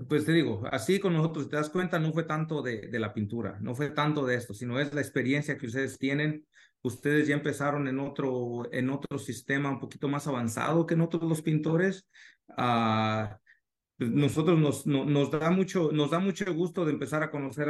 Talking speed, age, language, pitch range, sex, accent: 205 wpm, 40-59, English, 135-165 Hz, male, Mexican